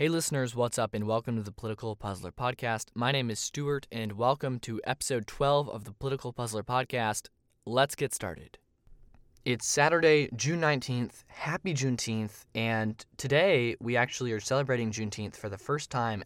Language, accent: English, American